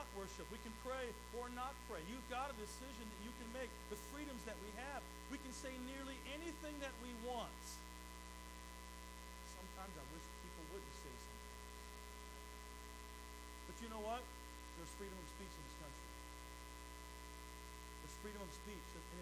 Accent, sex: American, male